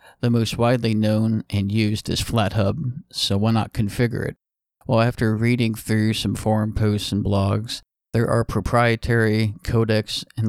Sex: male